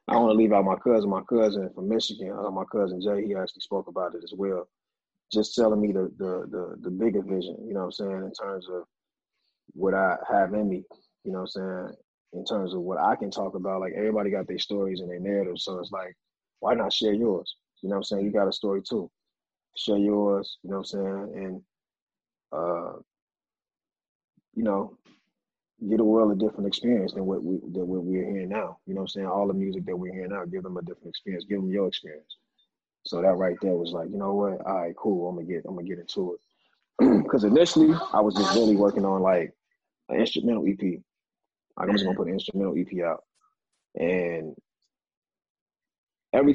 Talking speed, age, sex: 220 wpm, 20-39, male